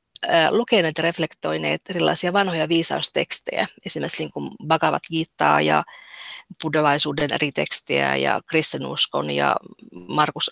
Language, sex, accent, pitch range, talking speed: Finnish, female, native, 150-185 Hz, 105 wpm